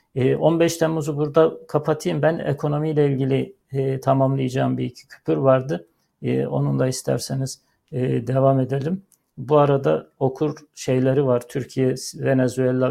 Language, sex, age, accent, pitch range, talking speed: Turkish, male, 60-79, native, 125-145 Hz, 110 wpm